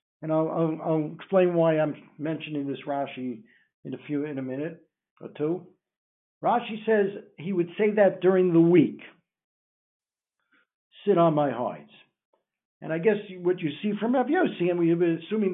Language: English